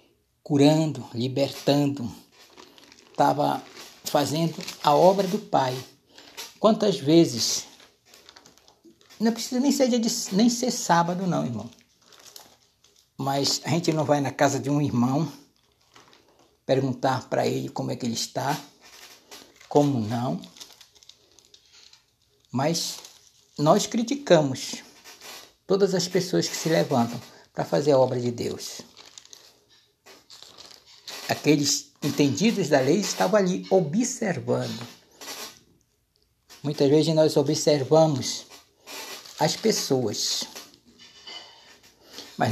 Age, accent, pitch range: 60-79, Brazilian, 135-185 Hz